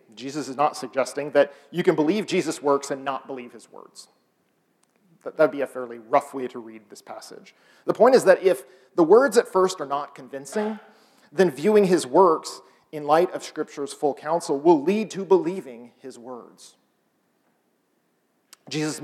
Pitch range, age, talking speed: 135-170 Hz, 40-59, 175 wpm